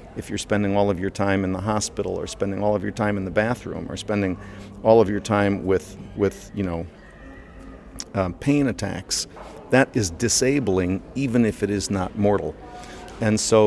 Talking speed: 190 wpm